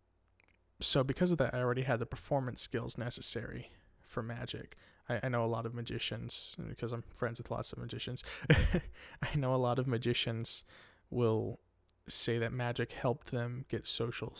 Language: English